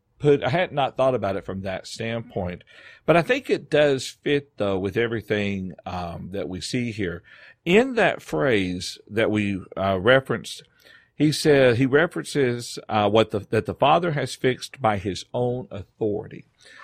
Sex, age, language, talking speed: male, 50-69, English, 170 wpm